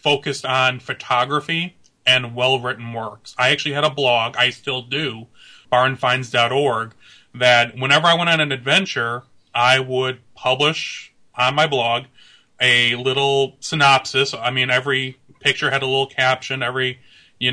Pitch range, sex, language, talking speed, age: 125-145 Hz, male, English, 140 wpm, 30-49